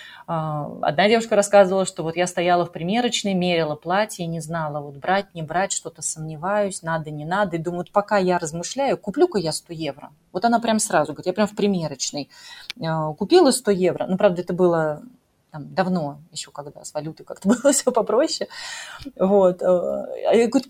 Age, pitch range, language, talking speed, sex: 30-49, 160-205 Hz, Russian, 175 wpm, female